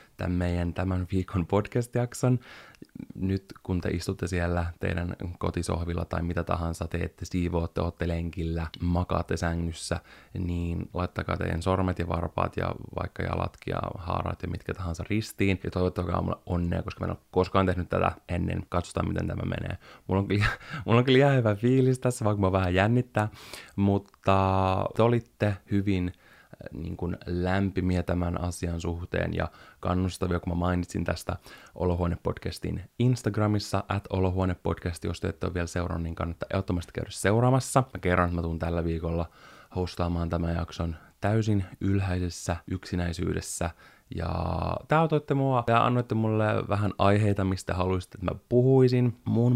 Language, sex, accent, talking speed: Finnish, male, native, 150 wpm